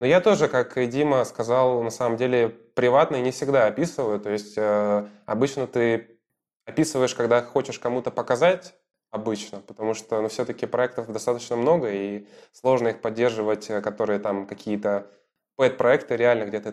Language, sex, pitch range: Russian, male, 105-120 Hz